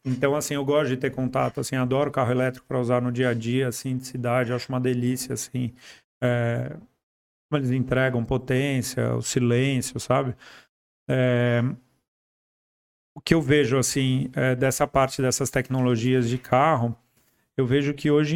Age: 40-59